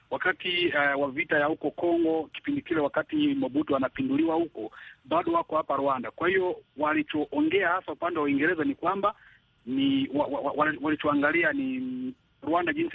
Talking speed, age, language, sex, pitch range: 150 wpm, 40-59, Swahili, male, 155-260 Hz